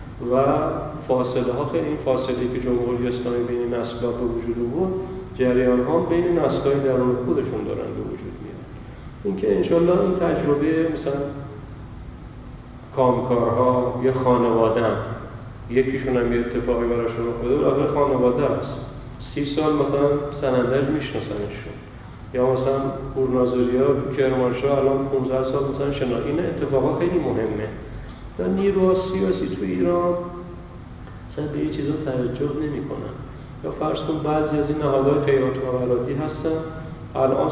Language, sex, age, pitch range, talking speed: Persian, male, 40-59, 120-145 Hz, 130 wpm